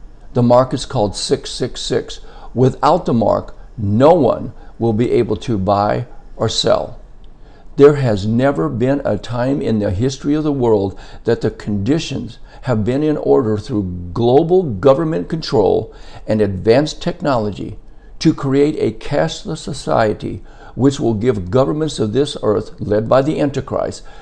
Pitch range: 105-140 Hz